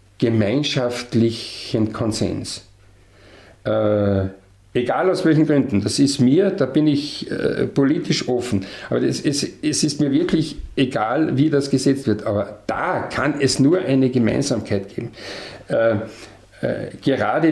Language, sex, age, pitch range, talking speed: German, male, 50-69, 115-145 Hz, 125 wpm